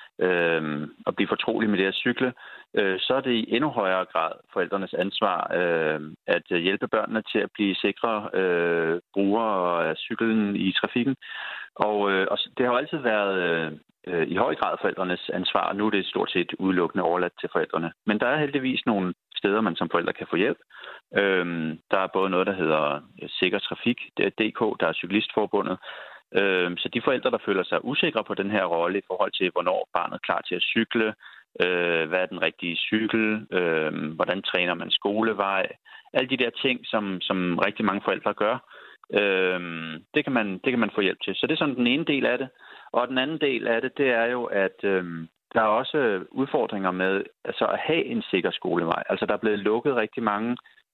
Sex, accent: male, native